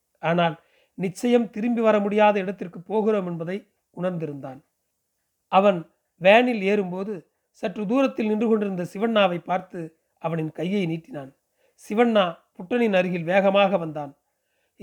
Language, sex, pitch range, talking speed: Tamil, male, 170-215 Hz, 105 wpm